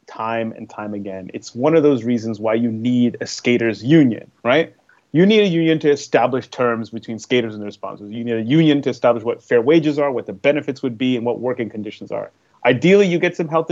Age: 30-49